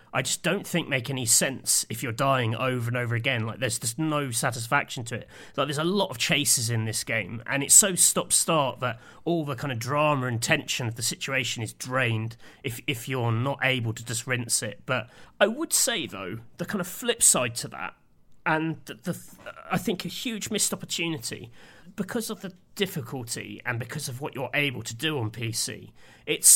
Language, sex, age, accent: English, male, 30-49, British